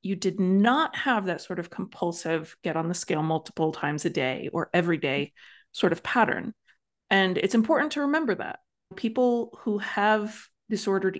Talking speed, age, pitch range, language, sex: 170 wpm, 30-49, 170-220 Hz, English, female